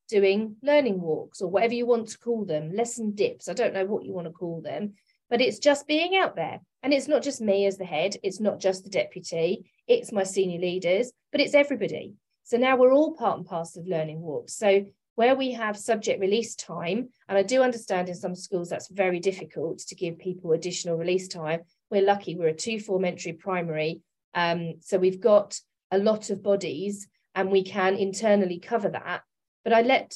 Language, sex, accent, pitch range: English, female, British, 185-240 Hz